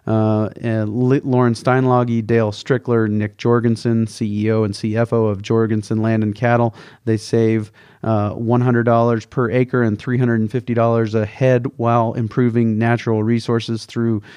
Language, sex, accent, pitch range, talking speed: English, male, American, 110-125 Hz, 130 wpm